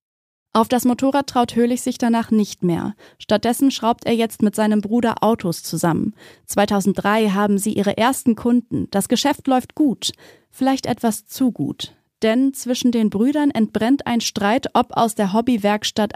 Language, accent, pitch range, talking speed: German, German, 205-245 Hz, 160 wpm